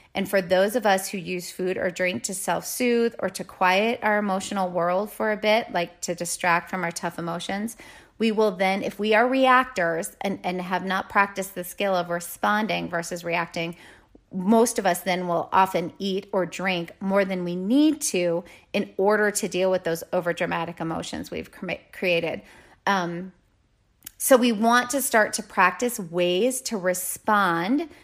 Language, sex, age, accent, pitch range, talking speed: English, female, 30-49, American, 180-220 Hz, 175 wpm